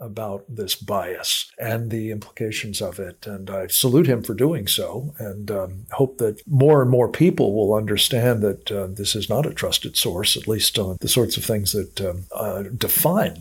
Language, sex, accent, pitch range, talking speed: English, male, American, 105-135 Hz, 200 wpm